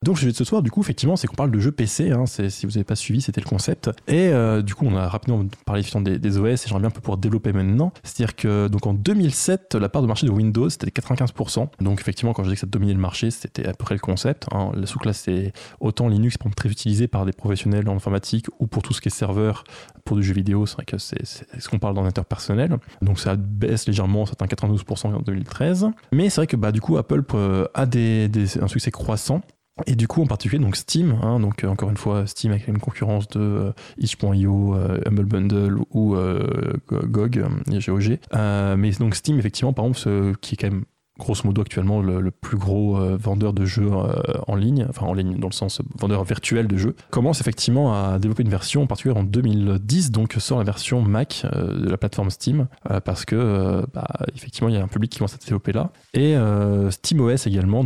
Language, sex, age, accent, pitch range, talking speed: English, male, 20-39, French, 100-125 Hz, 235 wpm